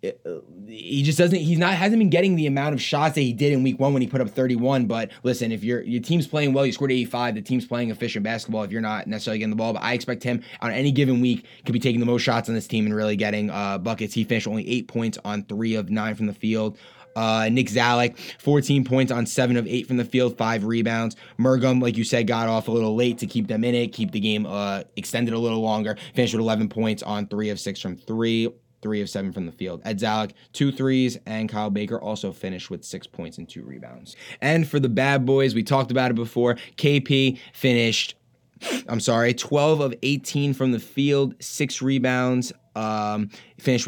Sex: male